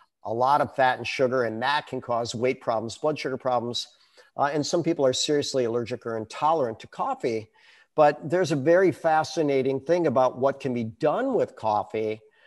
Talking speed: 190 wpm